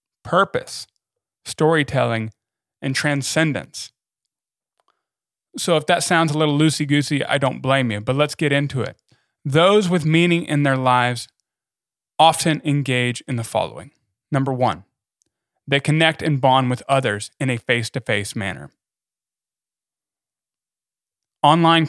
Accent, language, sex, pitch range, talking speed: American, English, male, 120-155 Hz, 130 wpm